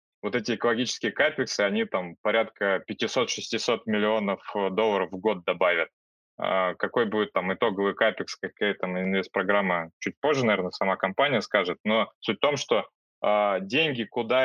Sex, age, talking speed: male, 20-39, 140 wpm